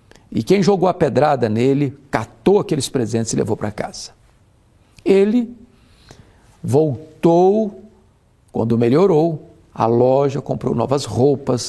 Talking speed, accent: 115 wpm, Brazilian